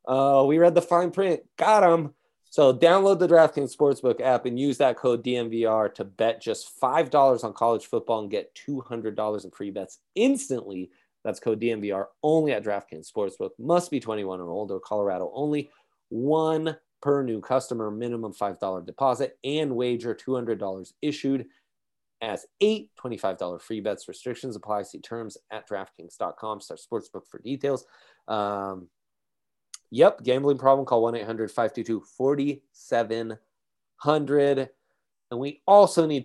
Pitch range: 110-140 Hz